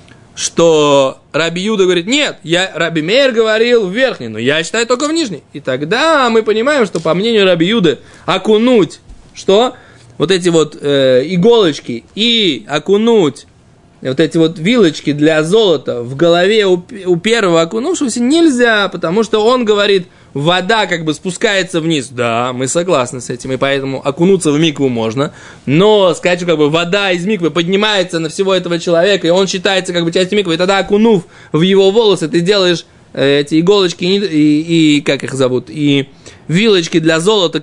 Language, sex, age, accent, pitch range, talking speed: Russian, male, 20-39, native, 155-215 Hz, 170 wpm